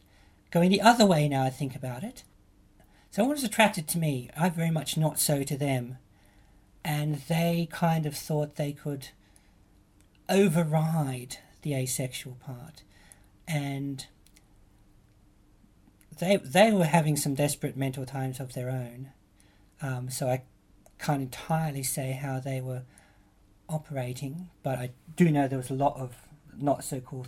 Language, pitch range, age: English, 105-155 Hz, 50-69